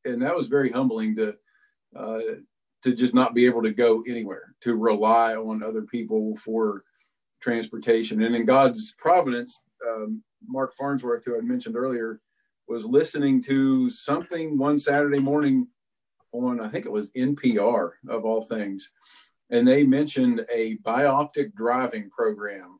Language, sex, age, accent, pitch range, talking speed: English, male, 50-69, American, 115-140 Hz, 145 wpm